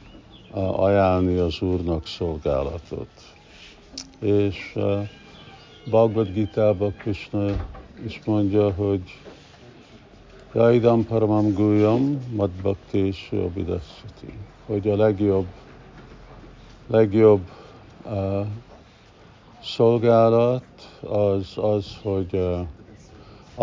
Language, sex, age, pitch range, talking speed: Hungarian, male, 50-69, 95-110 Hz, 65 wpm